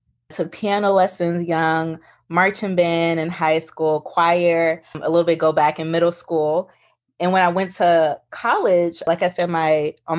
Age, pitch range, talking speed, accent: 20-39, 155-180 Hz, 170 wpm, American